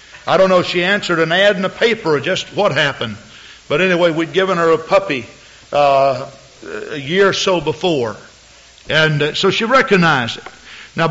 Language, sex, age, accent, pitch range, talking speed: English, male, 60-79, American, 145-200 Hz, 190 wpm